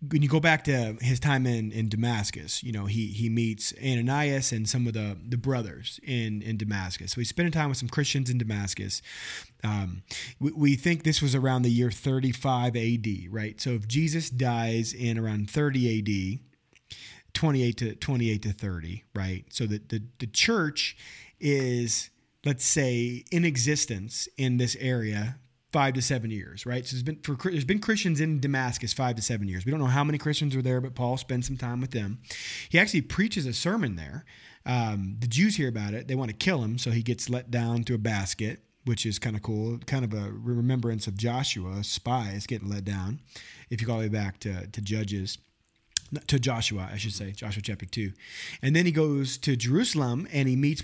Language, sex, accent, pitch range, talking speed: English, male, American, 110-135 Hz, 205 wpm